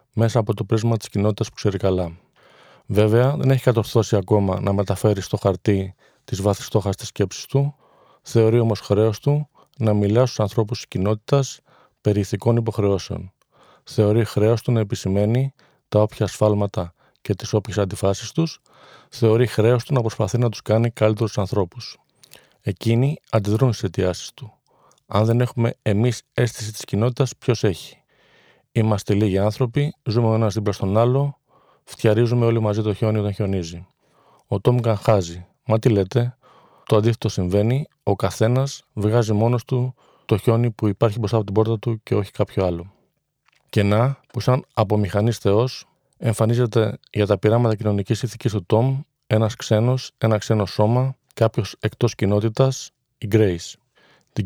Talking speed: 155 wpm